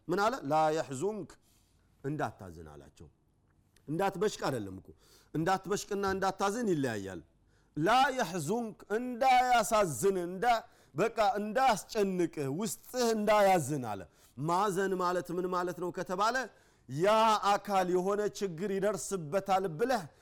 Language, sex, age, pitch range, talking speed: Amharic, male, 40-59, 155-210 Hz, 105 wpm